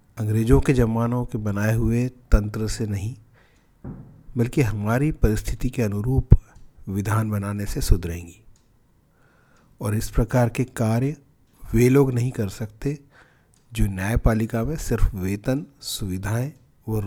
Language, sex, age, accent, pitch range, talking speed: Hindi, male, 40-59, native, 105-125 Hz, 125 wpm